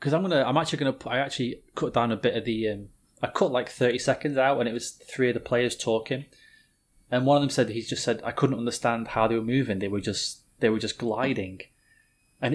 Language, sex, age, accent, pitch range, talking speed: English, male, 20-39, British, 110-145 Hz, 250 wpm